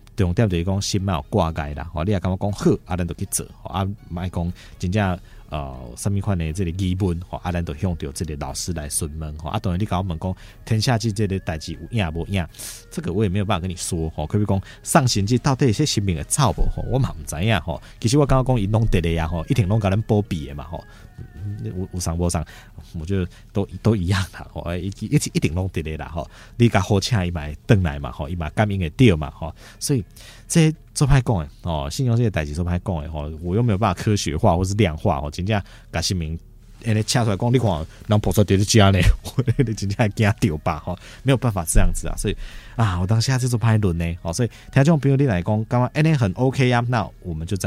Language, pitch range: Chinese, 85-110 Hz